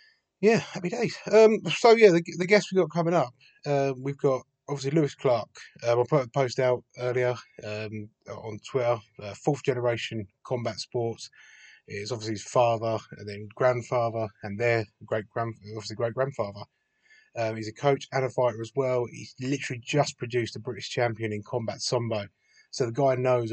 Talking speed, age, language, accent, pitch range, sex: 175 wpm, 20-39, English, British, 110-135 Hz, male